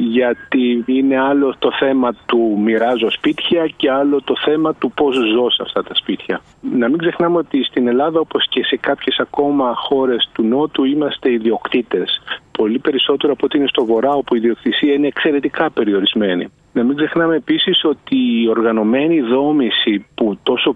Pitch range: 120-150 Hz